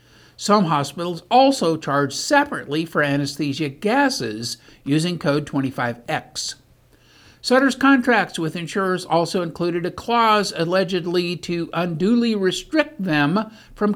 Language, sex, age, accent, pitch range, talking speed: English, male, 60-79, American, 145-205 Hz, 110 wpm